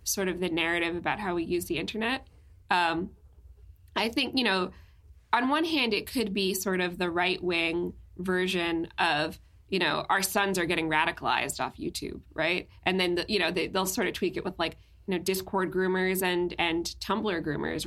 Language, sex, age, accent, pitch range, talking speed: English, female, 20-39, American, 170-200 Hz, 195 wpm